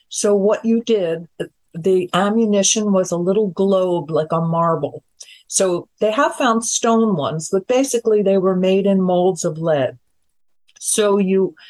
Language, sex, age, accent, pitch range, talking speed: English, female, 50-69, American, 165-210 Hz, 155 wpm